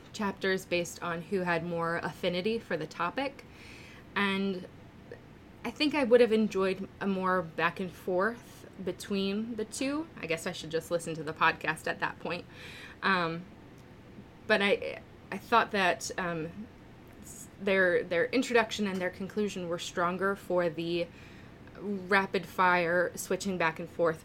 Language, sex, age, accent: English, female, 20-39, American